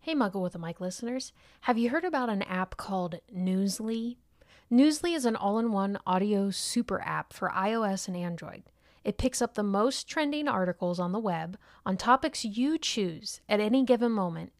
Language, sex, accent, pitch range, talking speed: English, female, American, 200-260 Hz, 175 wpm